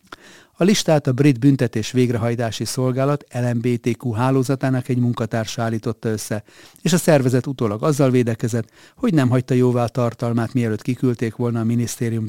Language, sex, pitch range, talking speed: Hungarian, male, 115-140 Hz, 140 wpm